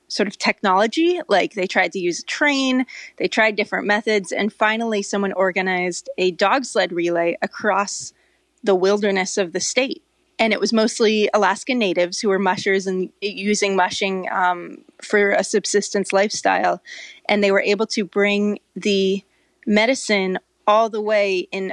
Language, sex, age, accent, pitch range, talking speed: English, female, 20-39, American, 190-225 Hz, 155 wpm